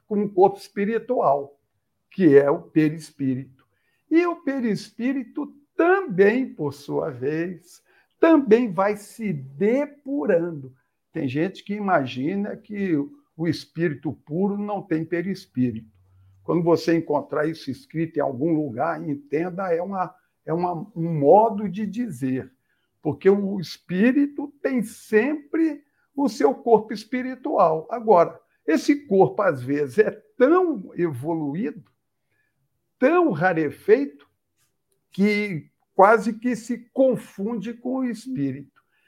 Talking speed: 110 wpm